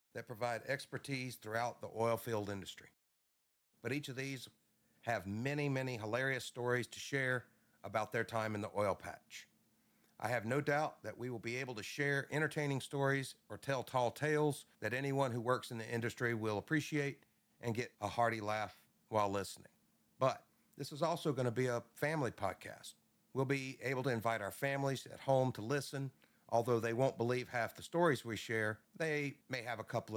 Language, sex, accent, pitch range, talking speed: English, male, American, 110-135 Hz, 185 wpm